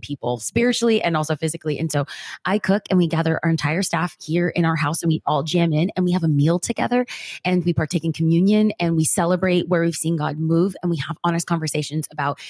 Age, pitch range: 30-49, 155-205 Hz